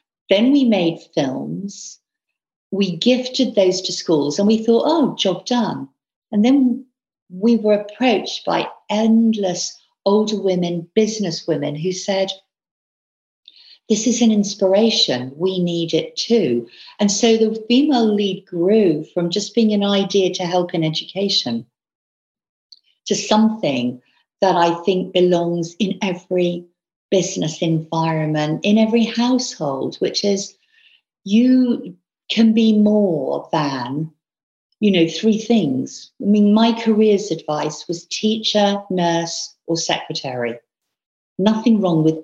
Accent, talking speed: British, 125 wpm